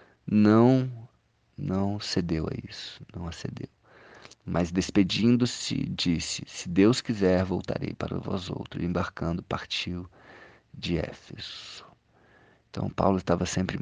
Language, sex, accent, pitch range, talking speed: Portuguese, male, Brazilian, 85-100 Hz, 115 wpm